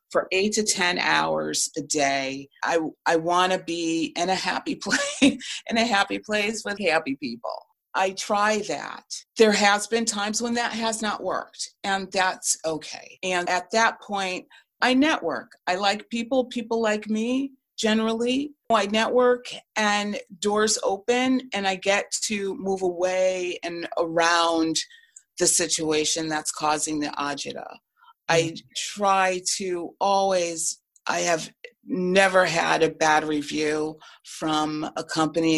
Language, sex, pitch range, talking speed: English, female, 150-215 Hz, 140 wpm